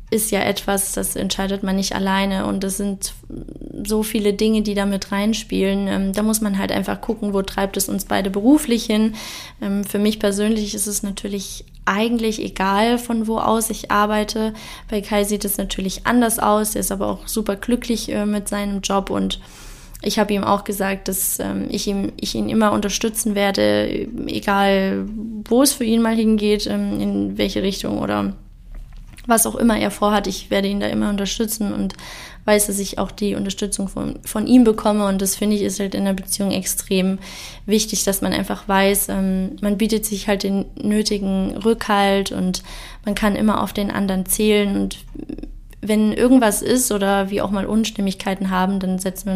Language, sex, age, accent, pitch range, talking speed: German, female, 20-39, German, 195-215 Hz, 180 wpm